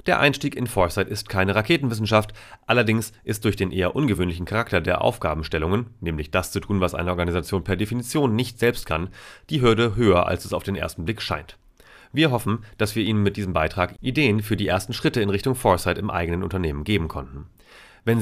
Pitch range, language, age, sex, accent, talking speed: 90-115 Hz, German, 30-49, male, German, 200 wpm